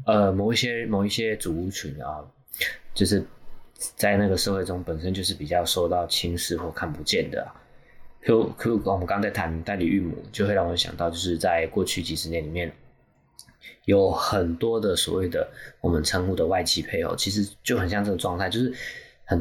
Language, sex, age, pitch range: Chinese, male, 20-39, 85-100 Hz